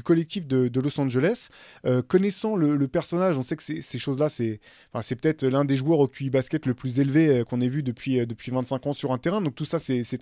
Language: French